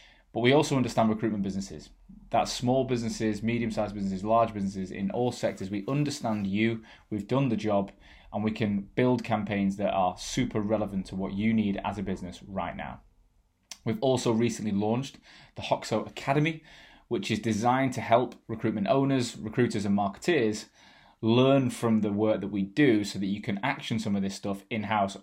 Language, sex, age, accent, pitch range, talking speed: English, male, 20-39, British, 100-120 Hz, 180 wpm